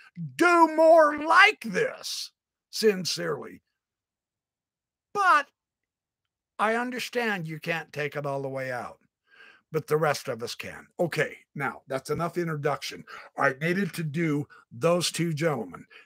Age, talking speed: 60-79, 125 wpm